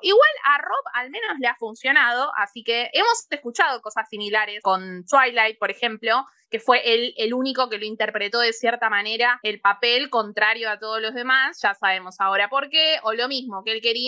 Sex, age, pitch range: female, 20-39, 225-285 Hz